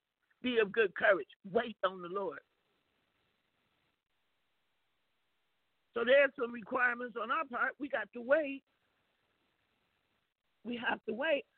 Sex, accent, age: male, American, 50-69